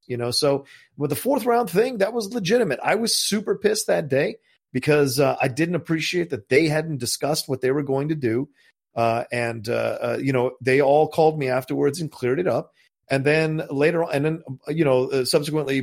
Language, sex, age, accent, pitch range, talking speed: English, male, 40-59, American, 125-160 Hz, 215 wpm